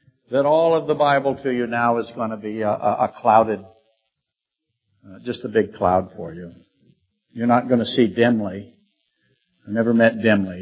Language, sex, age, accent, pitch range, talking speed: English, male, 60-79, American, 105-130 Hz, 185 wpm